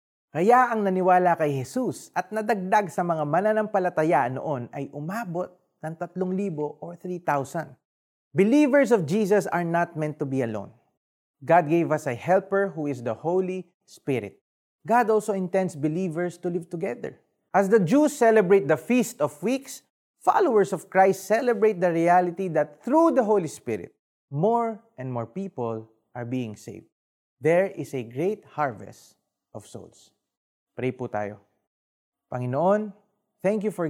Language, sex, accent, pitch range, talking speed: Filipino, male, native, 130-190 Hz, 145 wpm